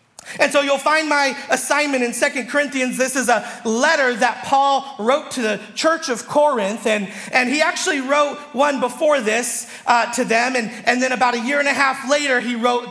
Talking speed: 205 wpm